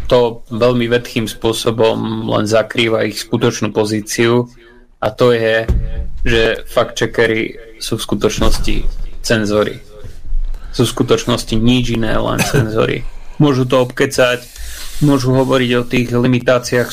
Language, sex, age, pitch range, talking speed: Slovak, male, 30-49, 110-125 Hz, 120 wpm